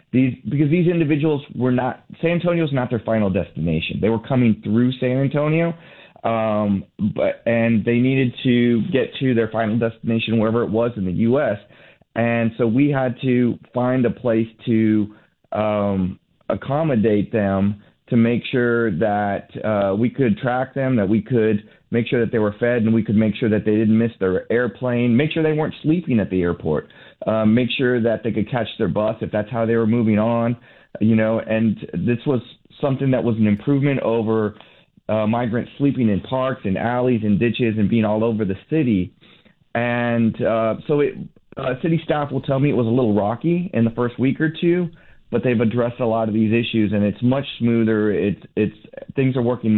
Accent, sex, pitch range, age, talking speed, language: American, male, 110-130 Hz, 30-49, 200 wpm, English